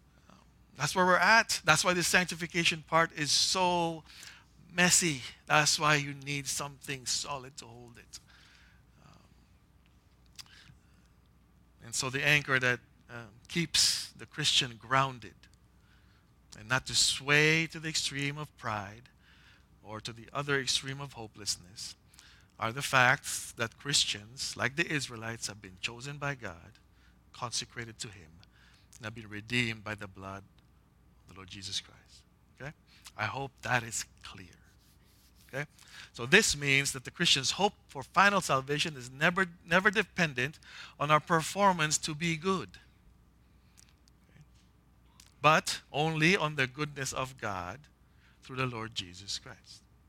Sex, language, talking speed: male, English, 140 wpm